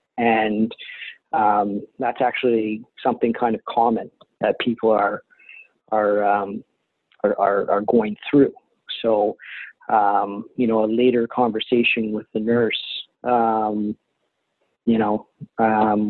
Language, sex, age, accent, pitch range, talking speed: English, male, 40-59, American, 105-125 Hz, 120 wpm